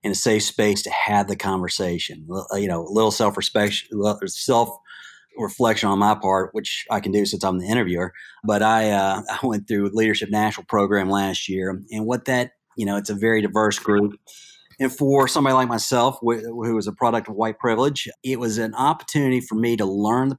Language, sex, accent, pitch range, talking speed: English, male, American, 100-125 Hz, 200 wpm